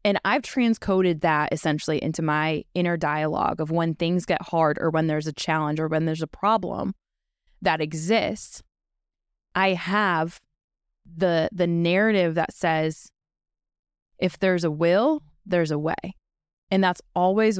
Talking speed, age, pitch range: 145 wpm, 20-39, 160-195 Hz